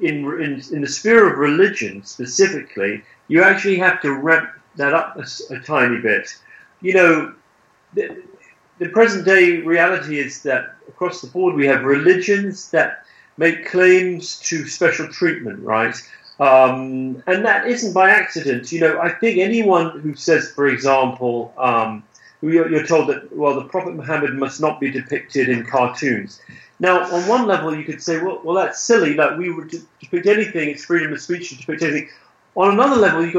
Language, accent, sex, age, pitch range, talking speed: English, British, male, 40-59, 140-185 Hz, 175 wpm